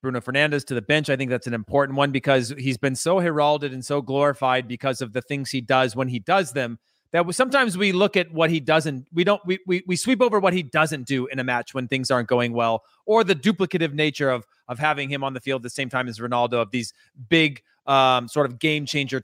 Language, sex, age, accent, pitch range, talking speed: English, male, 30-49, American, 135-165 Hz, 255 wpm